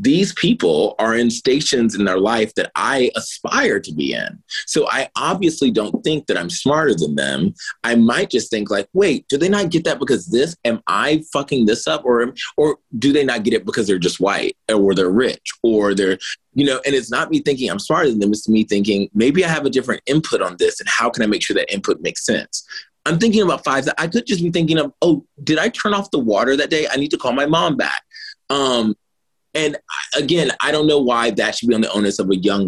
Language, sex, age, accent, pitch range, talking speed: English, male, 30-49, American, 105-145 Hz, 245 wpm